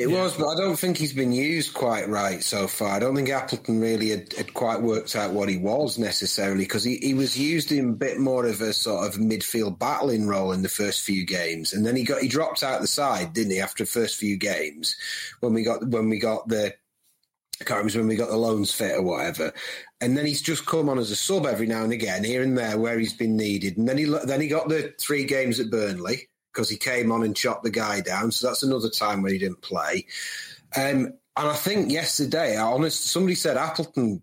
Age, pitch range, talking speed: 30-49, 110-140 Hz, 245 wpm